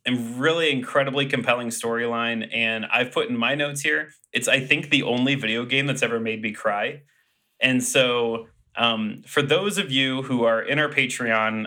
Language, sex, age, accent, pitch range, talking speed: English, male, 30-49, American, 115-140 Hz, 185 wpm